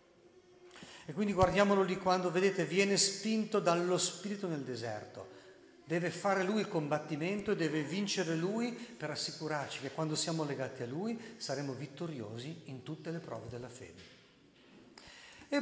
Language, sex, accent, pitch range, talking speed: Italian, male, native, 130-180 Hz, 145 wpm